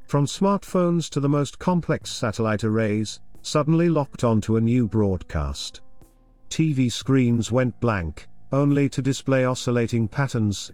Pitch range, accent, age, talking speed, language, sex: 110-145 Hz, British, 50-69, 130 wpm, English, male